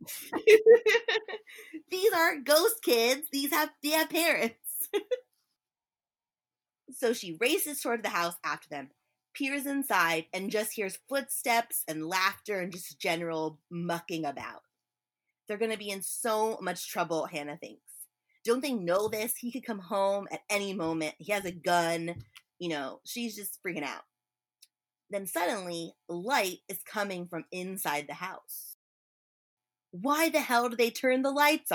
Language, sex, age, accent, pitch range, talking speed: English, female, 20-39, American, 155-255 Hz, 145 wpm